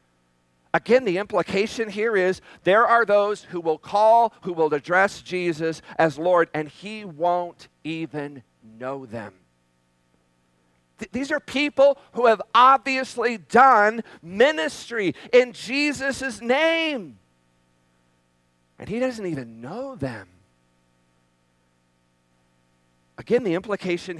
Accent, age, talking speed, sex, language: American, 50-69, 110 wpm, male, English